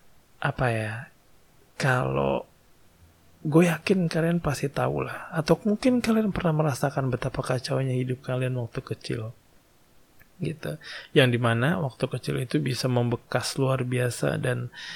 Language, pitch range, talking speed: Indonesian, 125-155 Hz, 125 wpm